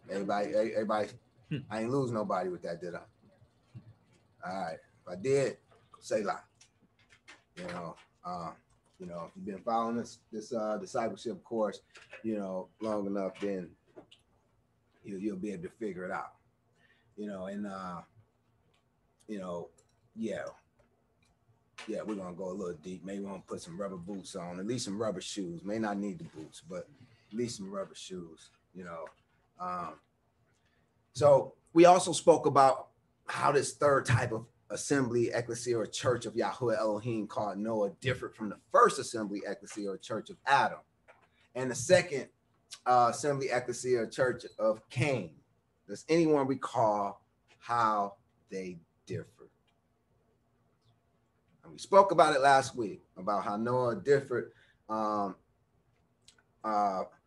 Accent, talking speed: American, 150 wpm